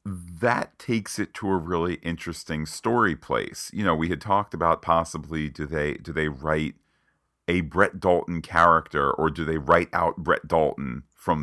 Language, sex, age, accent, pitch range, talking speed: English, male, 40-59, American, 75-95 Hz, 175 wpm